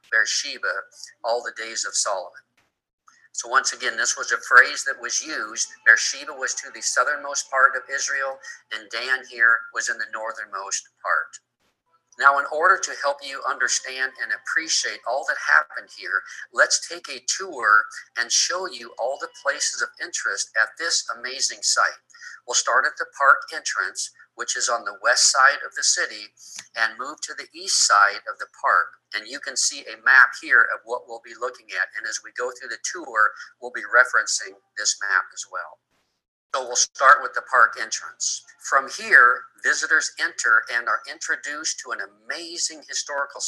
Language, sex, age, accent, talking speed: English, male, 50-69, American, 180 wpm